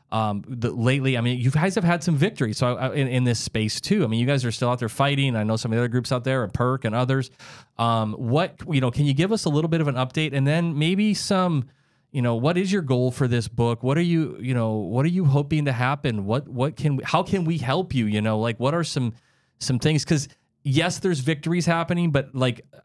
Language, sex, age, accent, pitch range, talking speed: English, male, 30-49, American, 115-145 Hz, 265 wpm